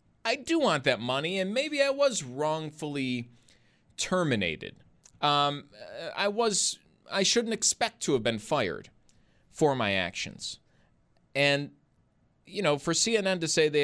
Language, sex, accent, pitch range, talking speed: English, male, American, 145-215 Hz, 135 wpm